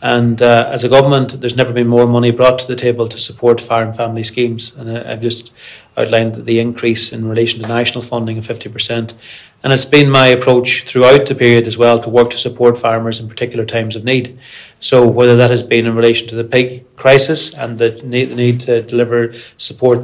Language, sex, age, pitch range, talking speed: English, male, 30-49, 115-125 Hz, 205 wpm